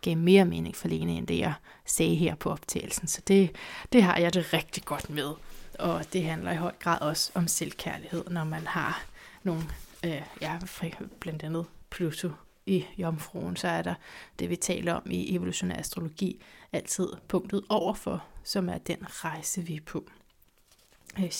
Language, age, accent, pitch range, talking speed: Danish, 30-49, native, 170-205 Hz, 175 wpm